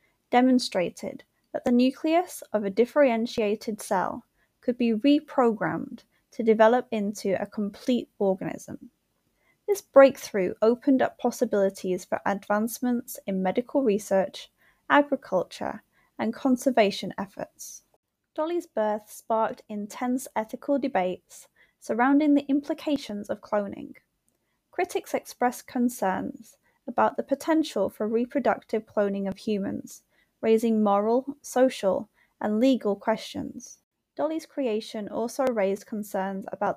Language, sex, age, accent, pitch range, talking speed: English, female, 10-29, British, 210-270 Hz, 105 wpm